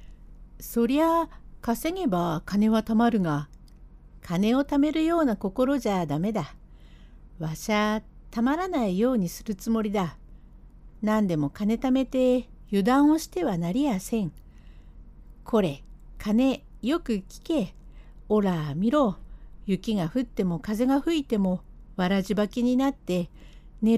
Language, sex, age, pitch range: Japanese, female, 60-79, 160-255 Hz